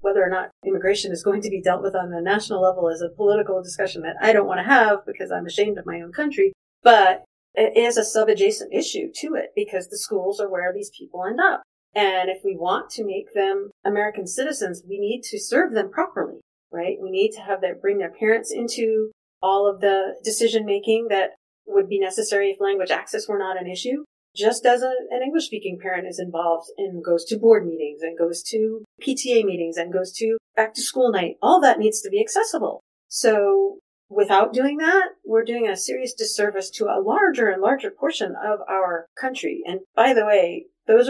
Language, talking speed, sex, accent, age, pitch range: English, 205 wpm, female, American, 40-59, 195-275 Hz